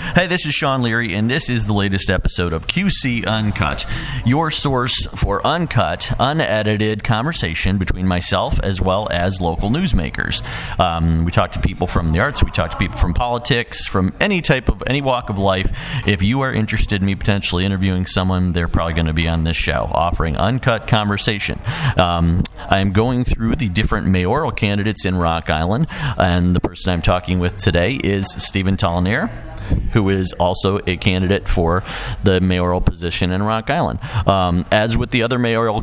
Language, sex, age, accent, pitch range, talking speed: English, male, 40-59, American, 90-115 Hz, 180 wpm